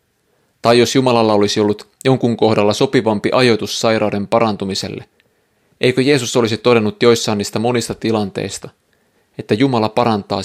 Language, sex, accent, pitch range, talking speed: Finnish, male, native, 105-120 Hz, 125 wpm